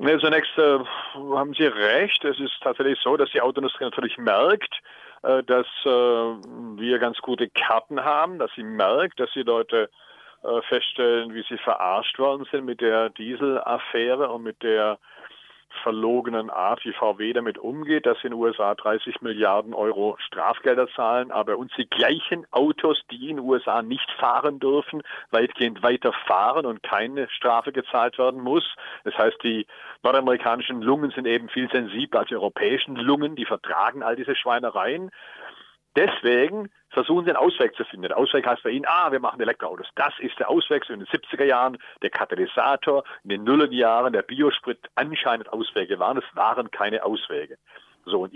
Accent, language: German, German